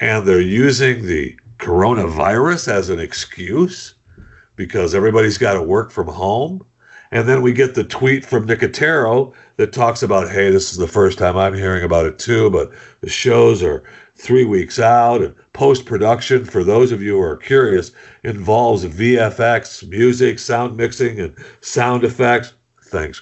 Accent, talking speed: American, 160 wpm